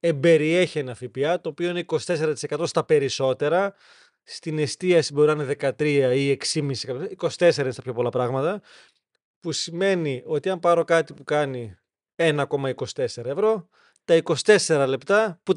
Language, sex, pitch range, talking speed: Greek, male, 140-190 Hz, 145 wpm